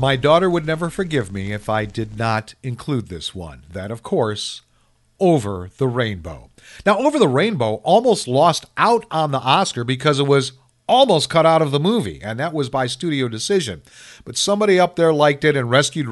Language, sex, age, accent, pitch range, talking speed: English, male, 50-69, American, 110-155 Hz, 195 wpm